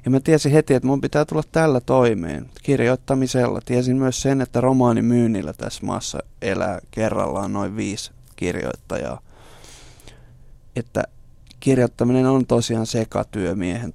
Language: Finnish